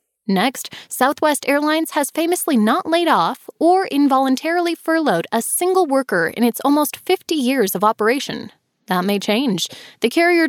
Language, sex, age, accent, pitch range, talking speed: English, female, 10-29, American, 235-300 Hz, 150 wpm